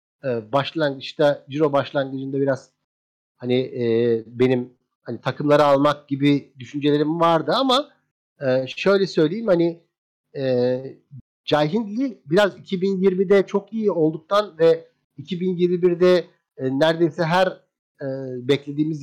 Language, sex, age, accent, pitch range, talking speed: Turkish, male, 50-69, native, 130-170 Hz, 100 wpm